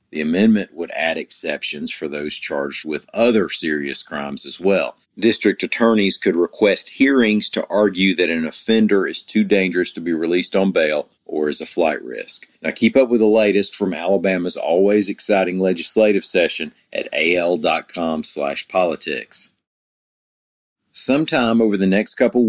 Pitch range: 85-110 Hz